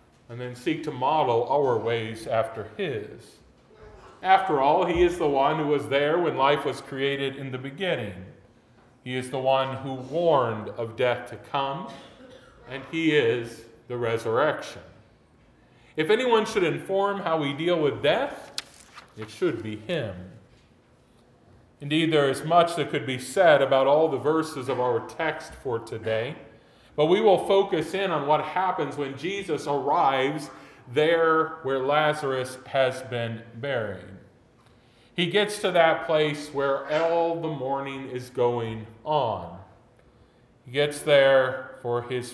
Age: 40-59